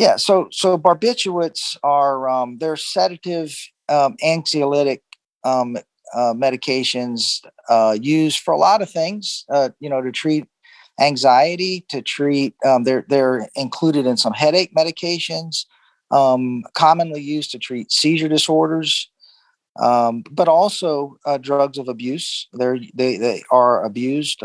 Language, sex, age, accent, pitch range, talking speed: English, male, 40-59, American, 120-155 Hz, 135 wpm